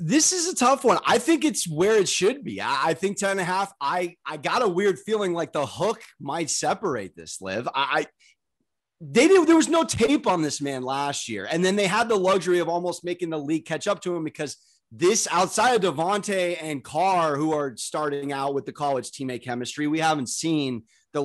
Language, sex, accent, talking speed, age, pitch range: English, male, American, 220 wpm, 30-49, 150-200 Hz